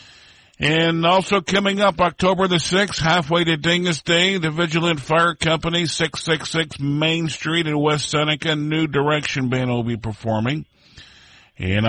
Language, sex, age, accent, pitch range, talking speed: English, male, 50-69, American, 115-160 Hz, 150 wpm